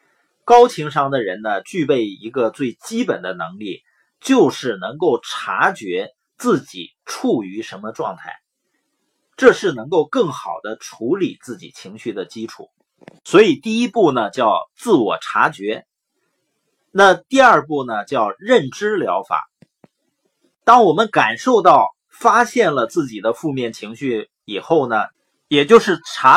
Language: Chinese